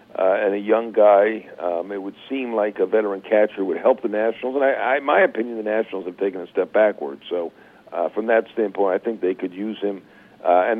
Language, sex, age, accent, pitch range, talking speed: English, male, 60-79, American, 105-145 Hz, 240 wpm